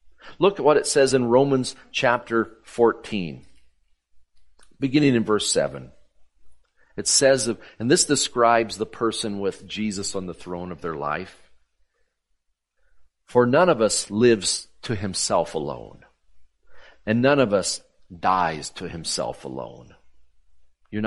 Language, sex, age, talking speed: English, male, 50-69, 130 wpm